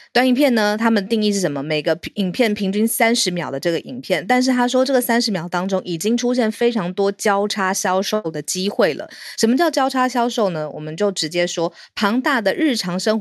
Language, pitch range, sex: Chinese, 170-225 Hz, female